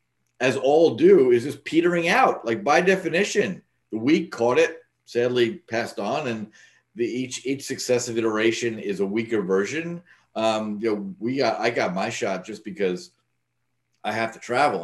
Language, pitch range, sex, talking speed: English, 95-125 Hz, male, 170 wpm